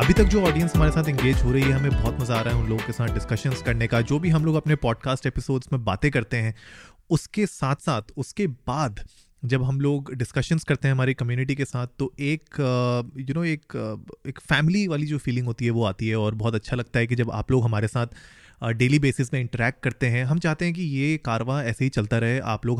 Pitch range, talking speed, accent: 120-150 Hz, 260 wpm, native